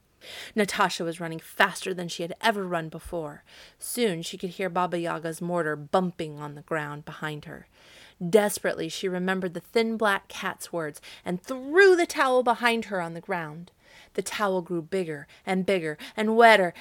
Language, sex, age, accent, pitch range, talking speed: English, female, 30-49, American, 170-235 Hz, 170 wpm